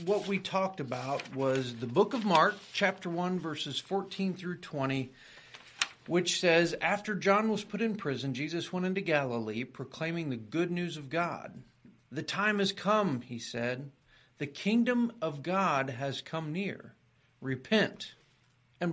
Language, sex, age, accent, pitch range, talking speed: English, male, 50-69, American, 130-180 Hz, 150 wpm